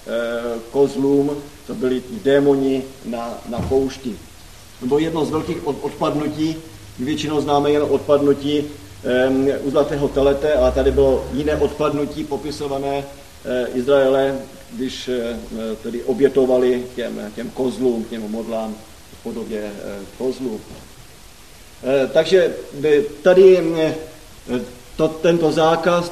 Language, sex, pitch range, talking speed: Slovak, male, 130-170 Hz, 115 wpm